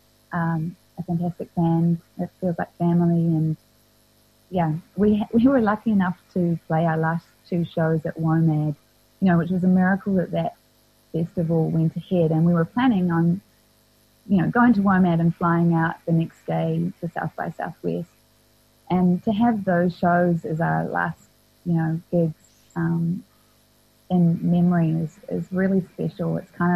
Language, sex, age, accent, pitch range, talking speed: English, female, 20-39, Australian, 160-180 Hz, 170 wpm